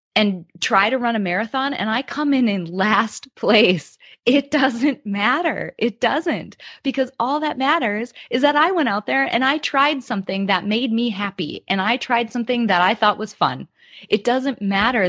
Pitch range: 180-245 Hz